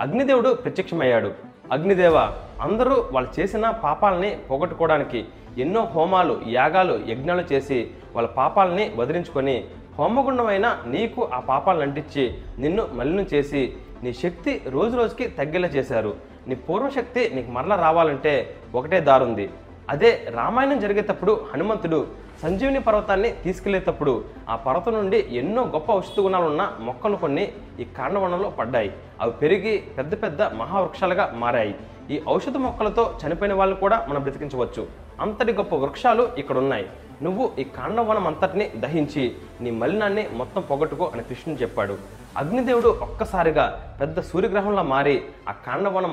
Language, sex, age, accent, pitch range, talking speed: Telugu, male, 30-49, native, 135-215 Hz, 125 wpm